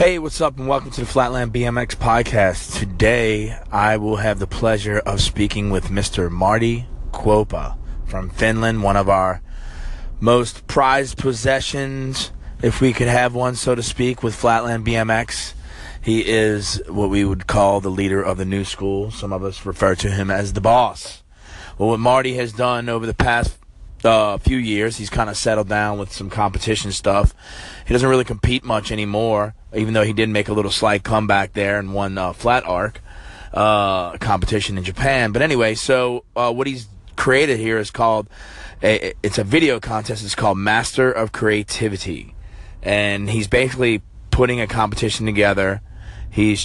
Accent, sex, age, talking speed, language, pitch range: American, male, 30-49, 175 wpm, English, 95-115 Hz